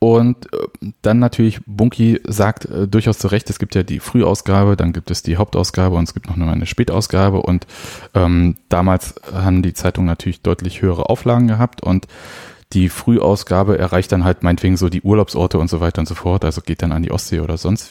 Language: German